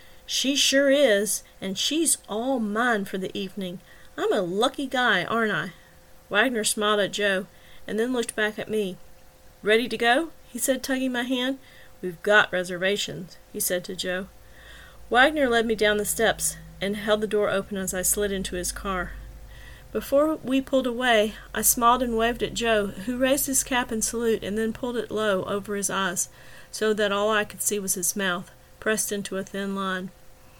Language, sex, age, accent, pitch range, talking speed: English, female, 40-59, American, 195-240 Hz, 190 wpm